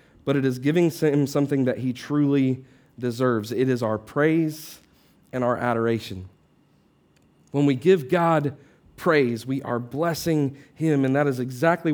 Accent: American